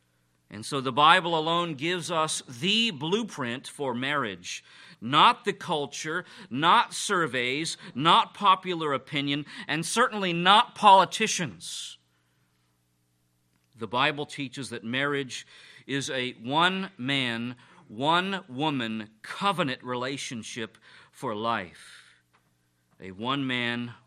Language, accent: English, American